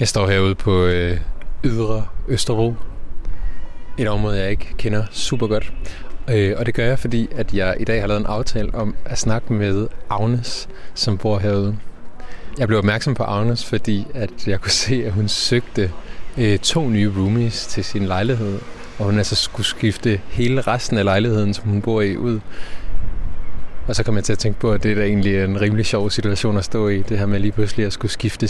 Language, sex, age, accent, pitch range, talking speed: Danish, male, 20-39, native, 100-115 Hz, 205 wpm